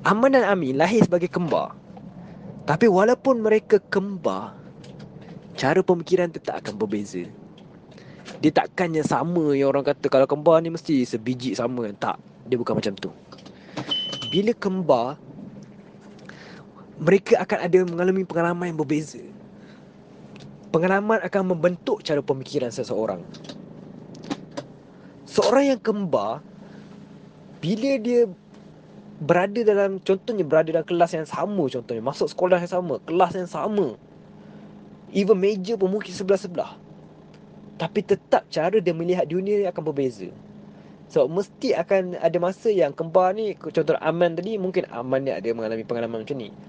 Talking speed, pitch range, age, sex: 130 wpm, 145-200 Hz, 20-39, male